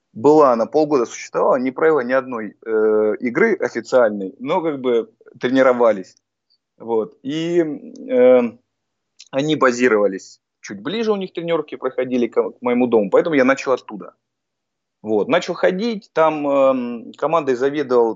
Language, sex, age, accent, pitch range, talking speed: Russian, male, 30-49, native, 110-180 Hz, 135 wpm